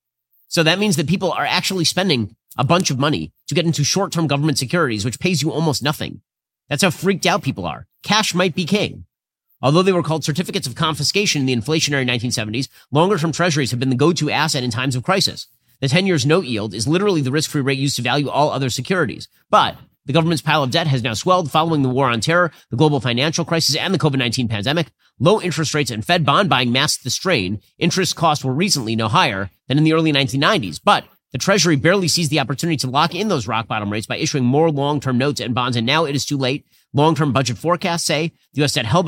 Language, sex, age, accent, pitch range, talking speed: English, male, 30-49, American, 130-175 Hz, 225 wpm